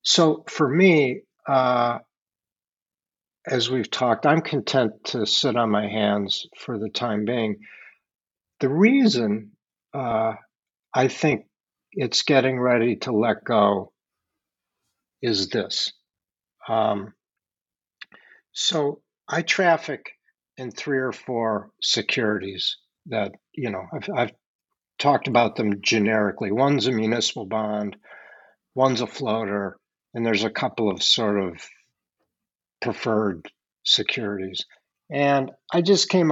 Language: English